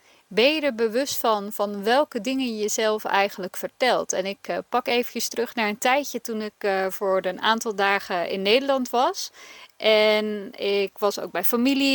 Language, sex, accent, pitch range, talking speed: Dutch, female, Dutch, 190-235 Hz, 175 wpm